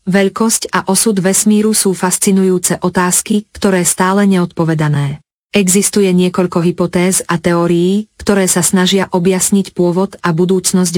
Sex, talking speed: female, 120 wpm